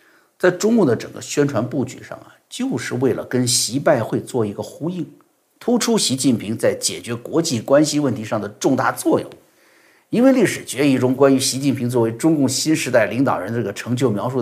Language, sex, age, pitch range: Chinese, male, 50-69, 125-155 Hz